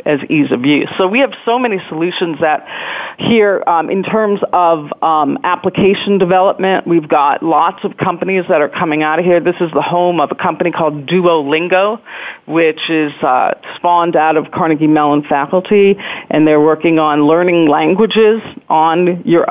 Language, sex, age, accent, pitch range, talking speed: English, female, 40-59, American, 155-185 Hz, 170 wpm